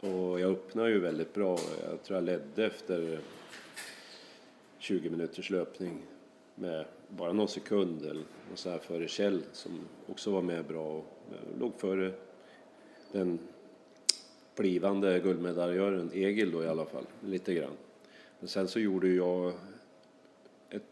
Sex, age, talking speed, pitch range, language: male, 30-49, 135 wpm, 85-95 Hz, Swedish